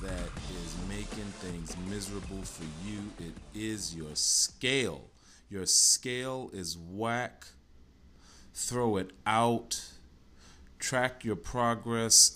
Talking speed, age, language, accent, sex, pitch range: 100 wpm, 30-49, English, American, male, 75-105 Hz